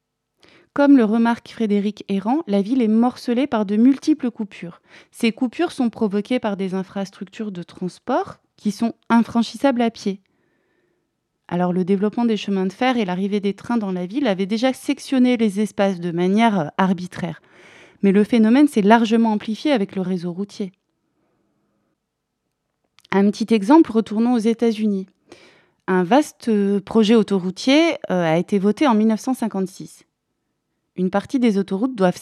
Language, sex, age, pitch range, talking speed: French, female, 20-39, 190-245 Hz, 150 wpm